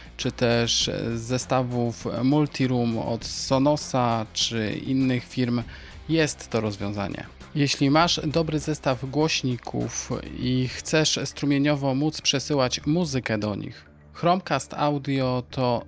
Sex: male